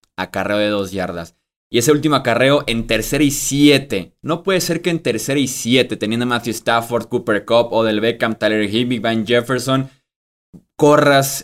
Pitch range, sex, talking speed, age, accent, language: 115-145 Hz, male, 180 wpm, 20-39, Mexican, Spanish